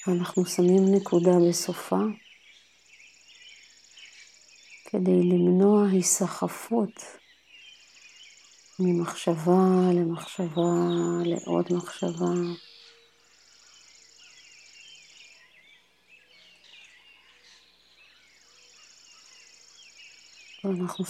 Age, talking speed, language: 40-59, 35 wpm, Hebrew